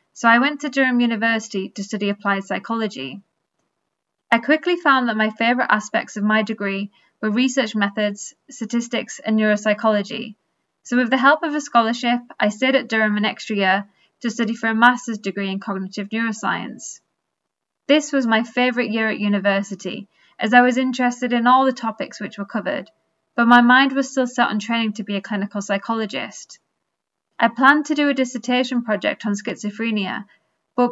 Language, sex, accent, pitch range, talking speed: English, female, British, 210-250 Hz, 175 wpm